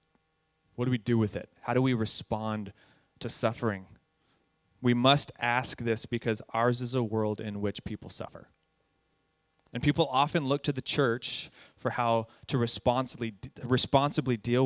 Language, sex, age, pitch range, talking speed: English, male, 20-39, 105-130 Hz, 155 wpm